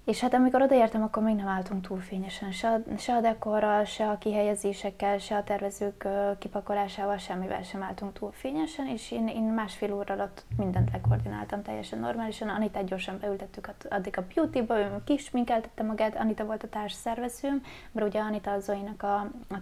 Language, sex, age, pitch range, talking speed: Hungarian, female, 20-39, 205-245 Hz, 170 wpm